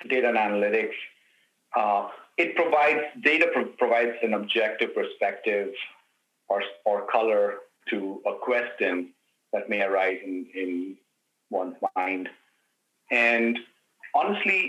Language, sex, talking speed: English, male, 105 wpm